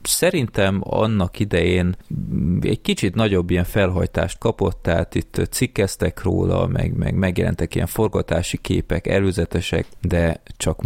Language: Hungarian